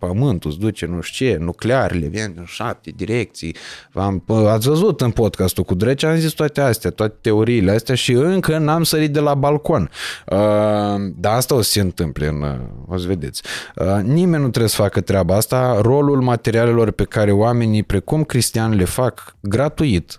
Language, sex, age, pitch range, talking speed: Romanian, male, 20-39, 95-130 Hz, 185 wpm